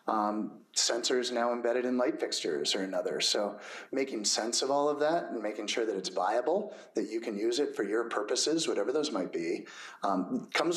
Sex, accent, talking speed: male, American, 200 wpm